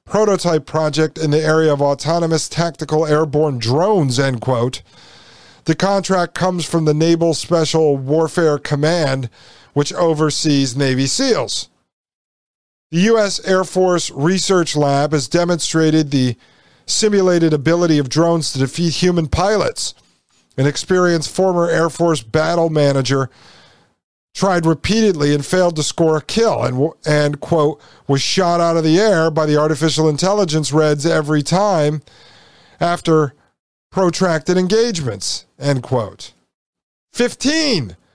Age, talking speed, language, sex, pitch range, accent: 50-69, 125 wpm, English, male, 150-180 Hz, American